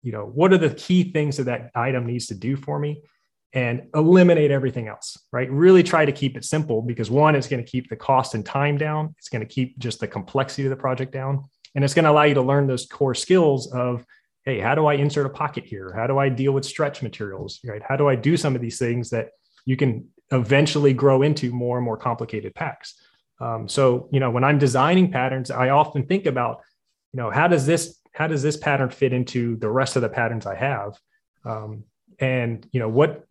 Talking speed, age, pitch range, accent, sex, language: 235 wpm, 30-49, 120-145 Hz, American, male, English